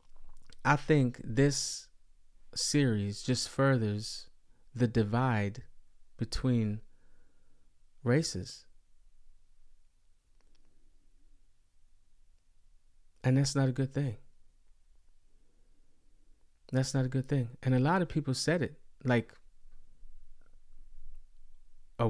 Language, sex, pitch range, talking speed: English, male, 85-135 Hz, 80 wpm